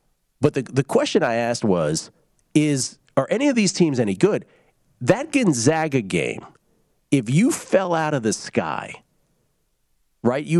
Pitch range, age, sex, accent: 110-155 Hz, 40-59, male, American